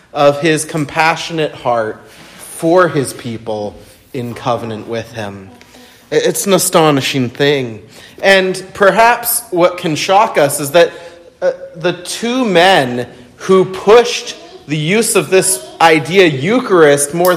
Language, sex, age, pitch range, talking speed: English, male, 30-49, 125-175 Hz, 125 wpm